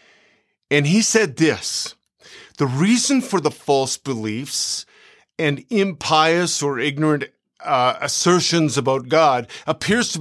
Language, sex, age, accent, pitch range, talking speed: English, male, 50-69, American, 145-185 Hz, 120 wpm